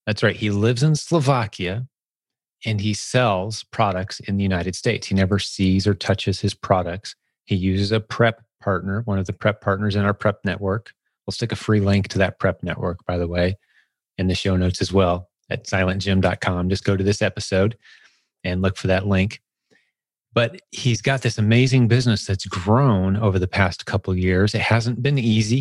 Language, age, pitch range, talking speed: English, 30-49, 95-110 Hz, 195 wpm